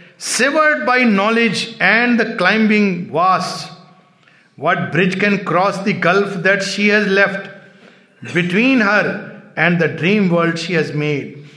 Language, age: Hindi, 60-79